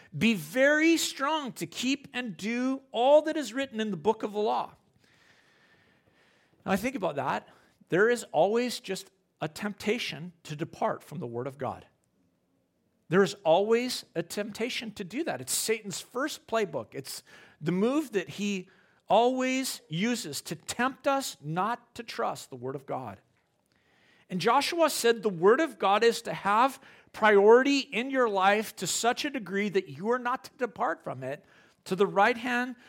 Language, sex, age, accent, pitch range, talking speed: English, male, 40-59, American, 185-250 Hz, 170 wpm